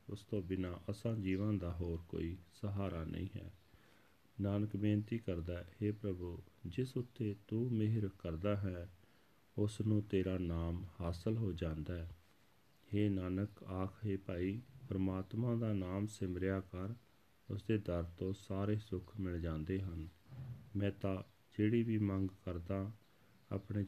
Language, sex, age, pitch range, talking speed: Punjabi, male, 40-59, 90-105 Hz, 140 wpm